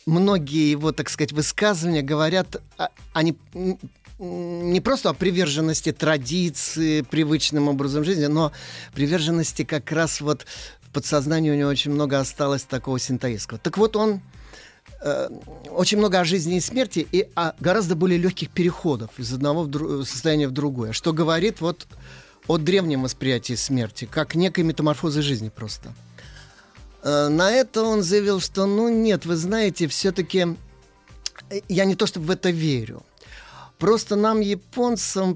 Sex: male